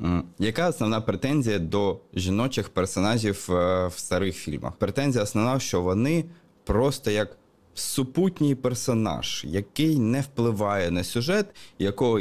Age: 20-39